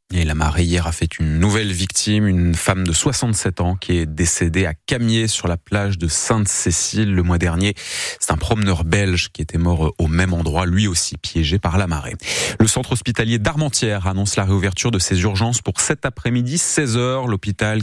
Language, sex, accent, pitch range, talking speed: French, male, French, 85-110 Hz, 195 wpm